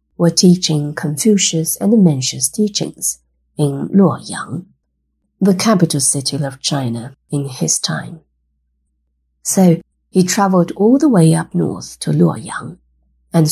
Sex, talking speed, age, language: female, 120 wpm, 50-69, English